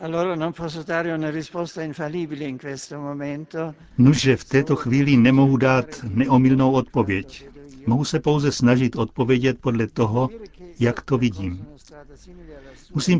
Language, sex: Czech, male